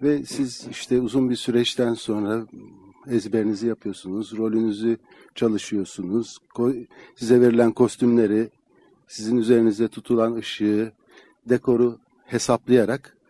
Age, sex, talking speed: 60-79, male, 95 wpm